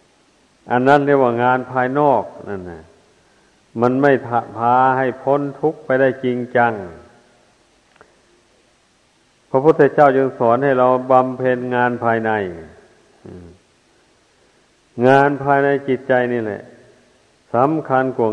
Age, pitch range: 60-79, 120-135 Hz